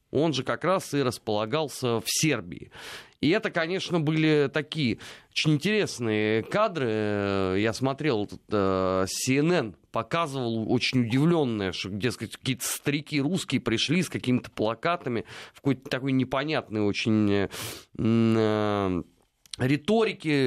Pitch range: 110-150 Hz